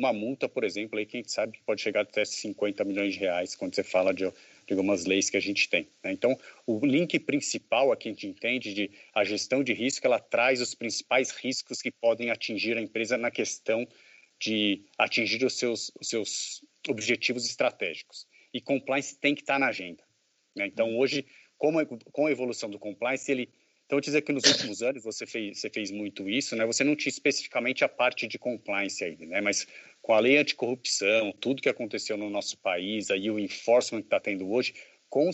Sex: male